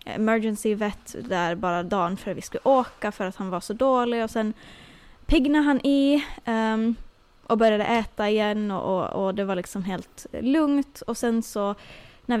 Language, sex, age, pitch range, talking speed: Swedish, female, 20-39, 195-245 Hz, 185 wpm